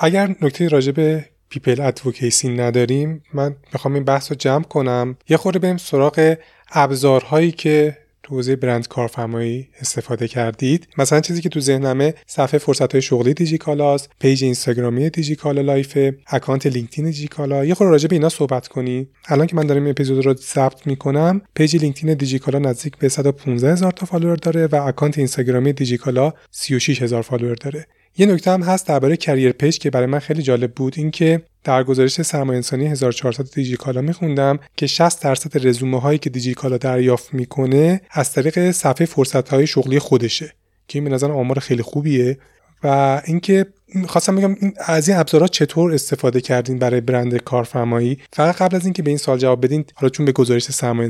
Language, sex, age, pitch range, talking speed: Persian, male, 30-49, 130-155 Hz, 175 wpm